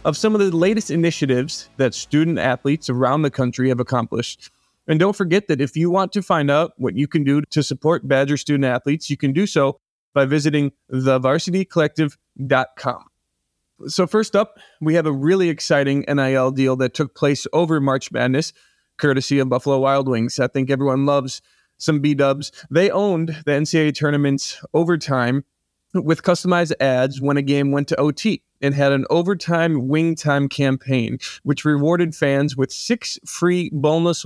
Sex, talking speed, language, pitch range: male, 170 wpm, English, 135-160 Hz